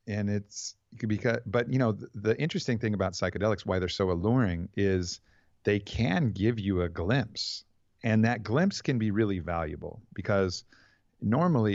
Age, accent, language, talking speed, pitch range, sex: 40-59, American, English, 160 wpm, 90-110 Hz, male